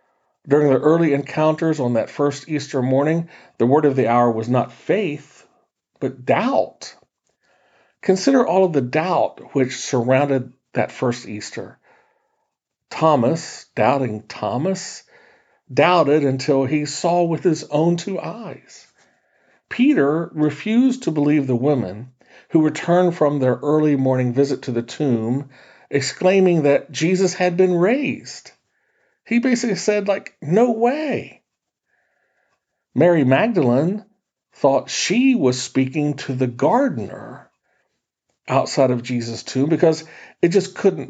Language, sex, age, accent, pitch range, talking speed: English, male, 50-69, American, 135-205 Hz, 125 wpm